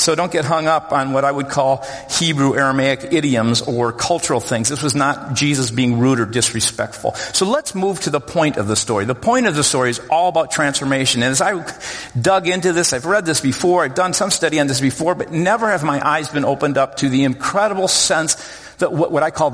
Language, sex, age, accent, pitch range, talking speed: English, male, 50-69, American, 135-190 Hz, 230 wpm